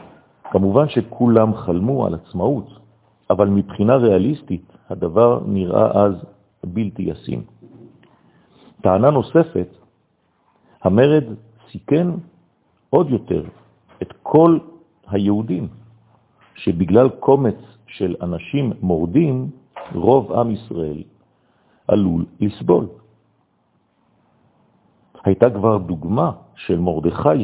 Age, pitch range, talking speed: 50-69, 95-130 Hz, 80 wpm